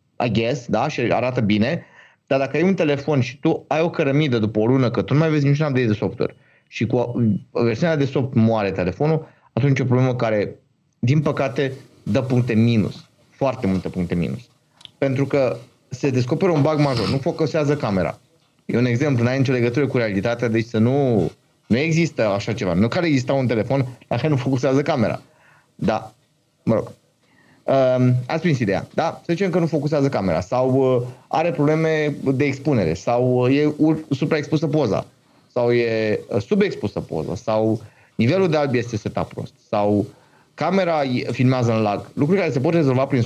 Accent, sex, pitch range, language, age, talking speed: native, male, 115-150 Hz, Romanian, 30-49, 180 wpm